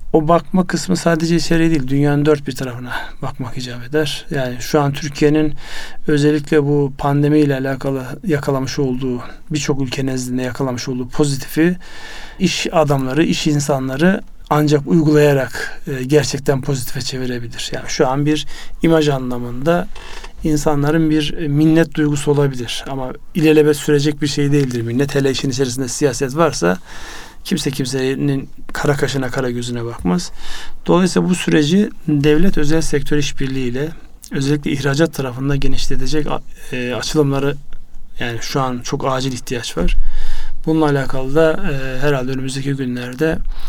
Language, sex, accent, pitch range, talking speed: Turkish, male, native, 130-155 Hz, 130 wpm